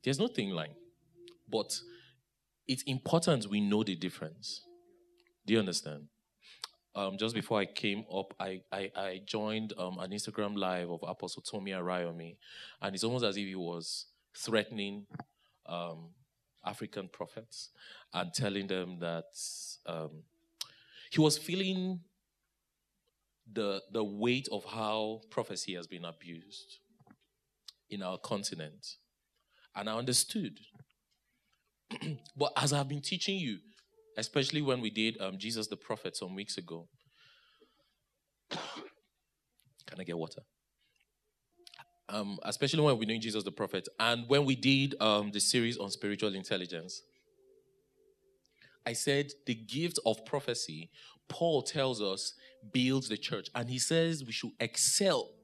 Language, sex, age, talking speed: English, male, 20-39, 130 wpm